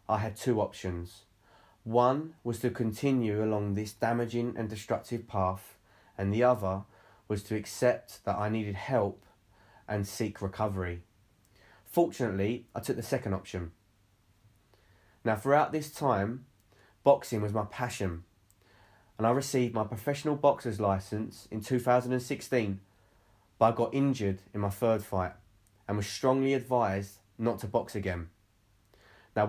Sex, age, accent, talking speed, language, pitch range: male, 20-39, British, 135 wpm, English, 100-125 Hz